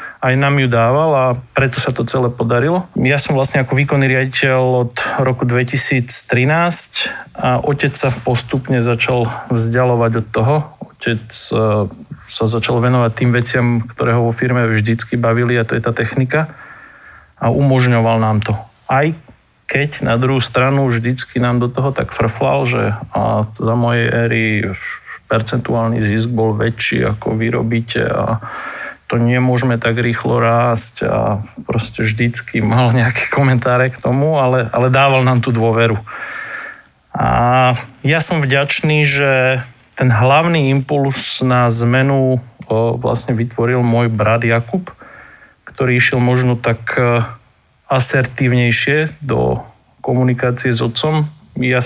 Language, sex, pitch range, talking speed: Slovak, male, 115-135 Hz, 130 wpm